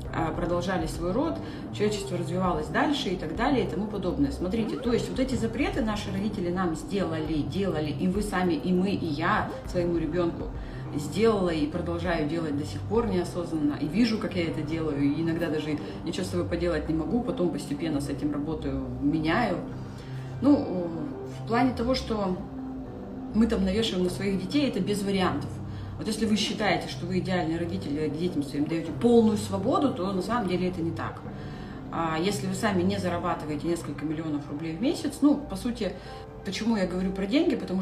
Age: 30-49